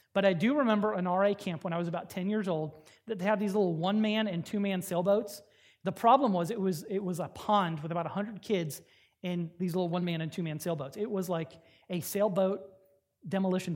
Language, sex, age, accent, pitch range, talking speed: English, male, 30-49, American, 175-225 Hz, 215 wpm